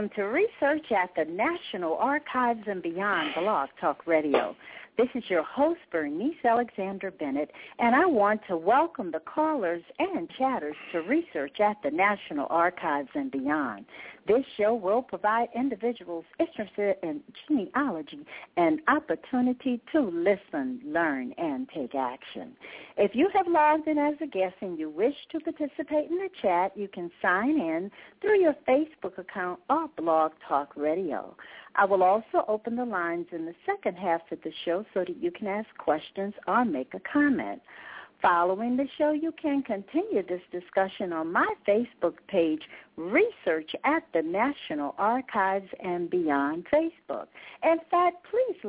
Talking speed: 155 wpm